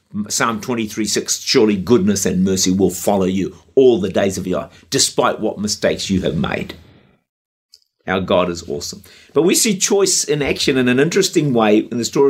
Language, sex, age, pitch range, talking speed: English, male, 50-69, 115-185 Hz, 190 wpm